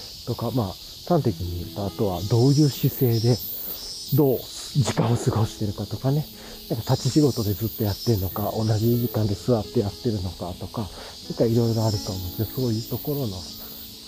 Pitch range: 95-125 Hz